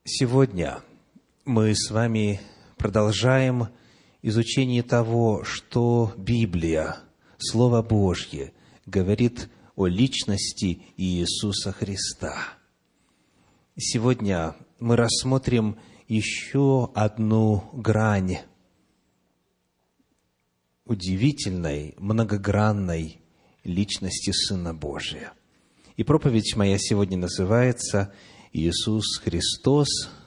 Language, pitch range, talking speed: Russian, 100-130 Hz, 65 wpm